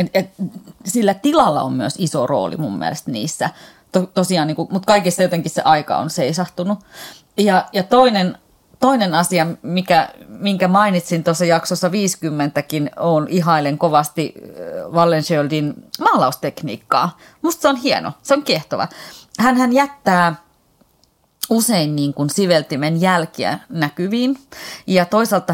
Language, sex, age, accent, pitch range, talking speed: Finnish, female, 30-49, native, 155-190 Hz, 125 wpm